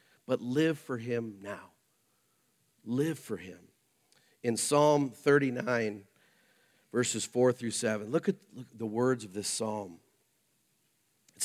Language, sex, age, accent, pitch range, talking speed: English, male, 50-69, American, 105-140 Hz, 125 wpm